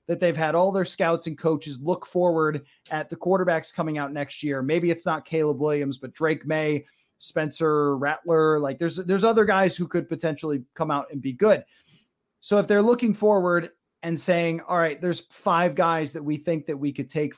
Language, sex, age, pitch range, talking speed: English, male, 30-49, 155-205 Hz, 205 wpm